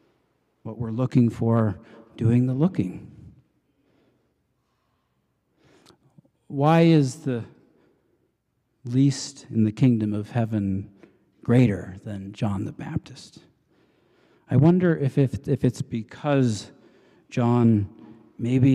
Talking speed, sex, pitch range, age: 95 wpm, male, 105-130 Hz, 50-69